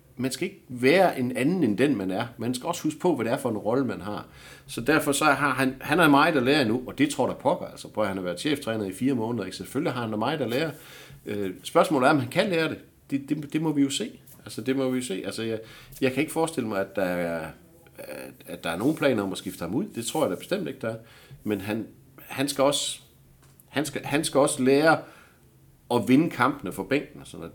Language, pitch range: Danish, 105-140 Hz